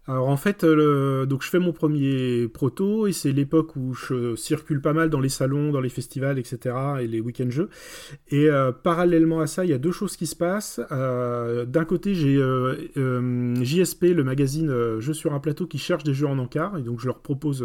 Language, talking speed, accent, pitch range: French, 230 wpm, French, 130-165 Hz